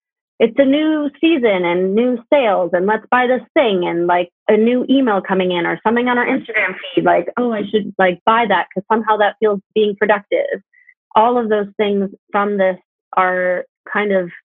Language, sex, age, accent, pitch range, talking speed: English, female, 30-49, American, 185-230 Hz, 195 wpm